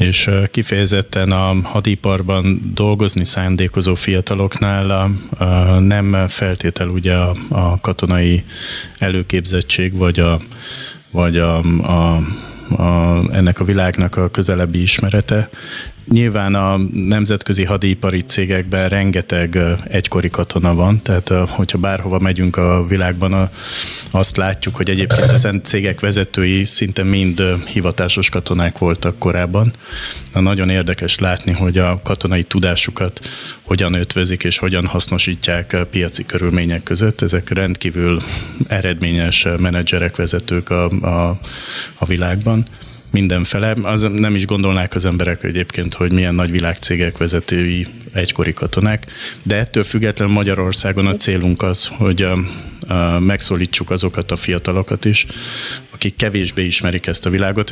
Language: Hungarian